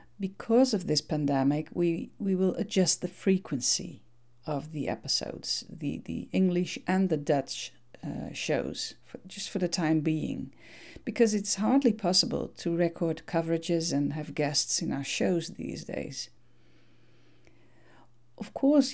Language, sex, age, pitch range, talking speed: Dutch, female, 50-69, 140-190 Hz, 140 wpm